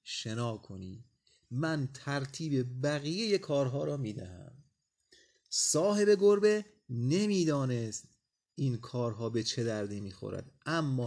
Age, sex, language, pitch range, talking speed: 30-49, male, Persian, 115-155 Hz, 105 wpm